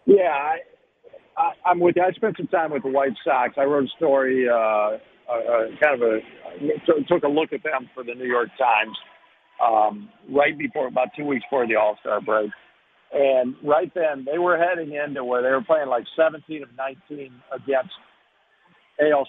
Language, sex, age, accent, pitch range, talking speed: English, male, 50-69, American, 130-185 Hz, 190 wpm